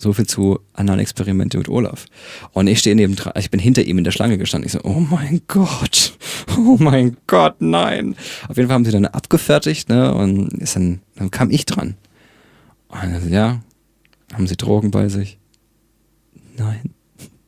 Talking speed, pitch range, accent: 180 wpm, 95-120 Hz, German